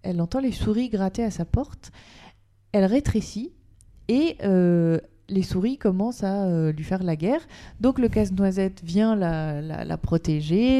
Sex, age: female, 30-49